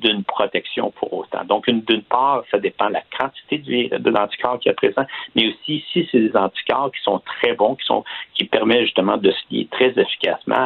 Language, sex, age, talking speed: French, male, 60-79, 220 wpm